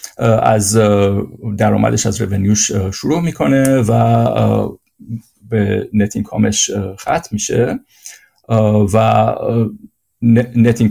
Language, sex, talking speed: Persian, male, 75 wpm